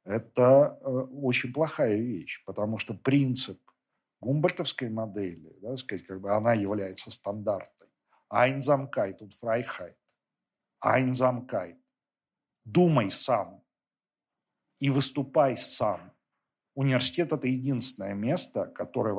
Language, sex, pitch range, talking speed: Russian, male, 105-135 Hz, 95 wpm